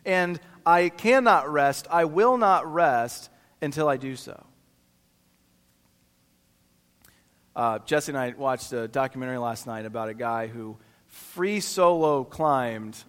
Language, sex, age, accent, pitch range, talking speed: English, male, 40-59, American, 105-165 Hz, 130 wpm